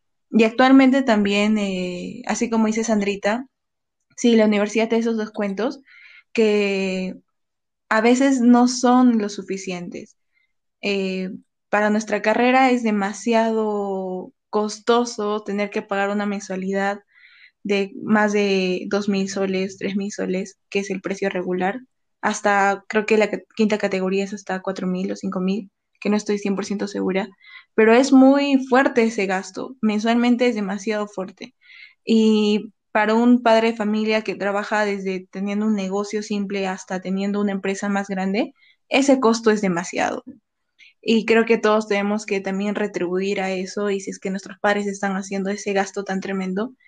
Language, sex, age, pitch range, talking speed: Spanish, female, 20-39, 195-225 Hz, 155 wpm